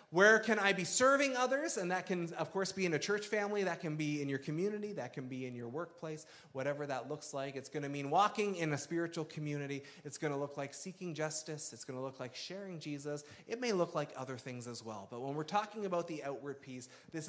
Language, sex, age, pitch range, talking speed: English, male, 30-49, 130-170 Hz, 250 wpm